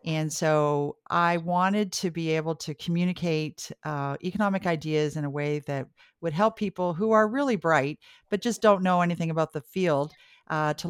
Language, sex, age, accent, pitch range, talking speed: English, female, 50-69, American, 145-180 Hz, 180 wpm